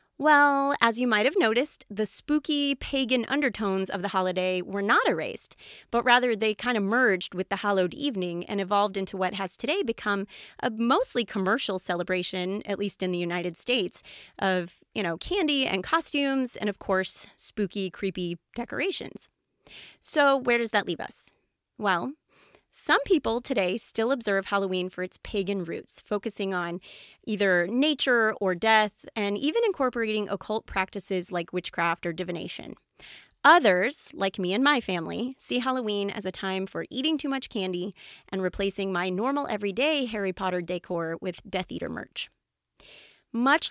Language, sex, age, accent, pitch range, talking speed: English, female, 30-49, American, 185-245 Hz, 160 wpm